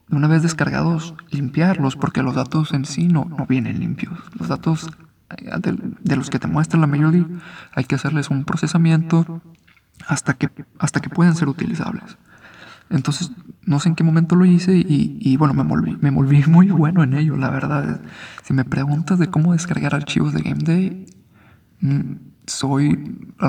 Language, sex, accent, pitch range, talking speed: Spanish, male, Mexican, 135-160 Hz, 175 wpm